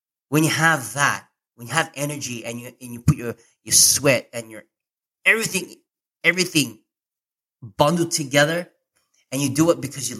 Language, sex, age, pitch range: English, male, 30-49, 125-155 Hz